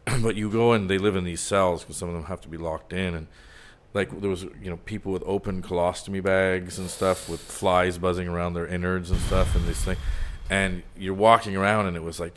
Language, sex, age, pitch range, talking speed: English, male, 40-59, 85-100 Hz, 245 wpm